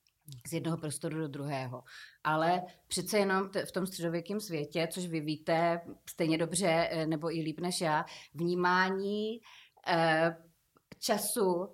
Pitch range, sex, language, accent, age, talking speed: 165-200 Hz, female, Czech, native, 30-49, 125 wpm